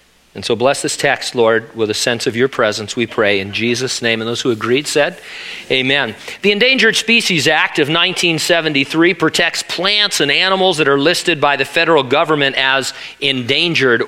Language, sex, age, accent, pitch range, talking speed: English, male, 40-59, American, 130-175 Hz, 180 wpm